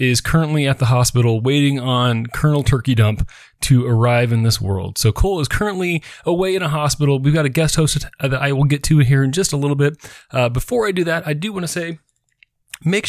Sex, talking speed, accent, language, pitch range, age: male, 230 wpm, American, English, 130-170 Hz, 30-49